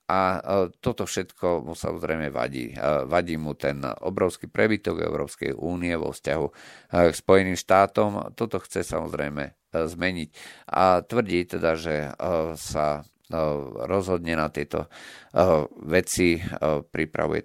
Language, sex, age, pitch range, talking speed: Slovak, male, 50-69, 75-90 Hz, 110 wpm